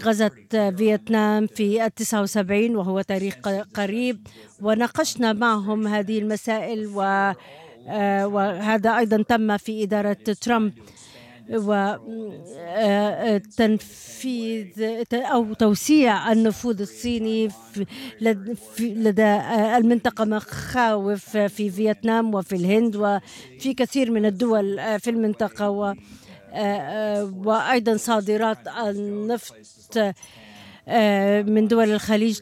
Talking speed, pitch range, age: 75 wpm, 205-225 Hz, 50-69